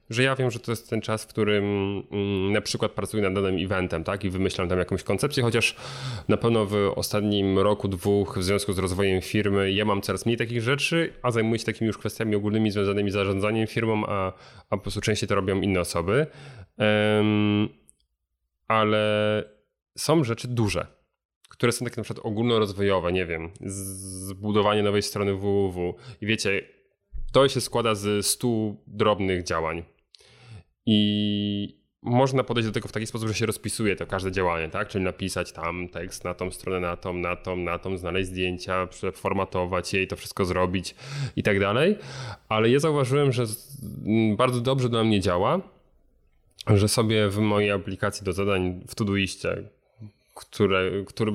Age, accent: 30-49, native